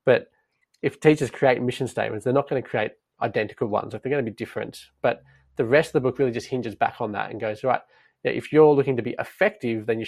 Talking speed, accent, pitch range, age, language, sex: 245 wpm, Australian, 115-135 Hz, 20-39, English, male